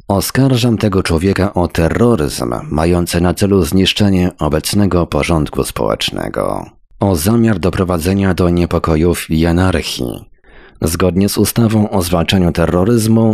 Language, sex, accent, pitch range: Polish, male, native, 80-95 Hz